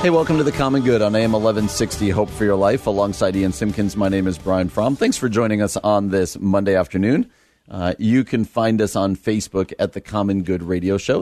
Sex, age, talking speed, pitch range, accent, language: male, 40-59, 225 wpm, 95-115 Hz, American, English